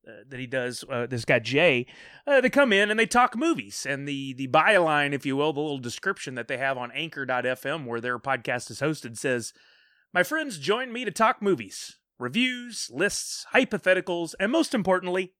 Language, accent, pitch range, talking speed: English, American, 135-185 Hz, 195 wpm